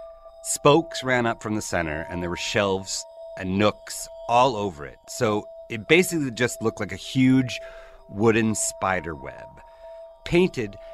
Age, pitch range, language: 30-49, 110-165 Hz, English